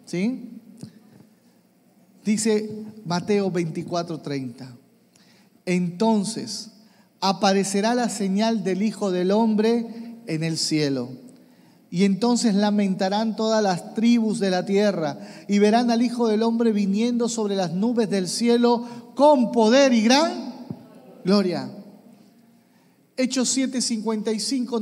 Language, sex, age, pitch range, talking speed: Spanish, male, 40-59, 205-255 Hz, 100 wpm